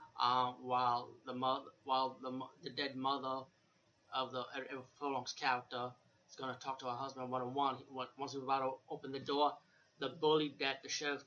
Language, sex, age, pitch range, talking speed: English, male, 20-39, 125-140 Hz, 185 wpm